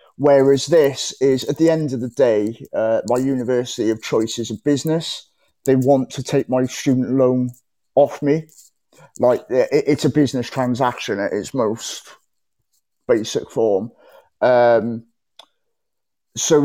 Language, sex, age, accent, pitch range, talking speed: English, male, 30-49, British, 130-160 Hz, 135 wpm